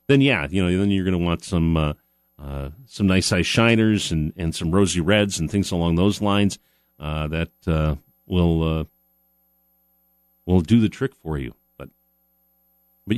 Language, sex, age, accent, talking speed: English, male, 40-59, American, 180 wpm